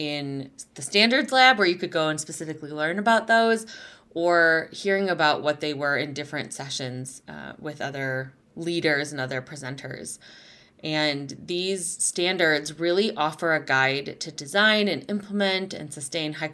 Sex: female